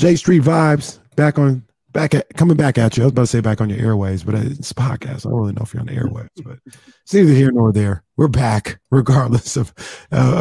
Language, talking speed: English, 255 wpm